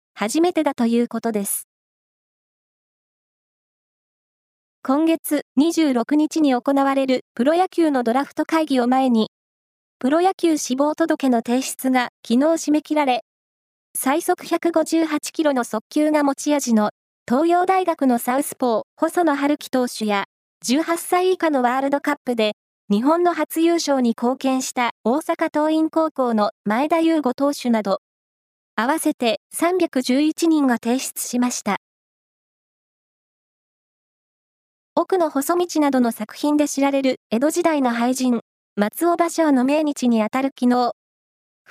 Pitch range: 245-315 Hz